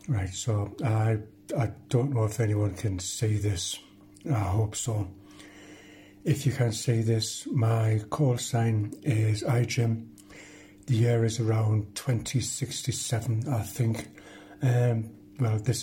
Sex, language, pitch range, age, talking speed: male, English, 105-125 Hz, 60-79, 130 wpm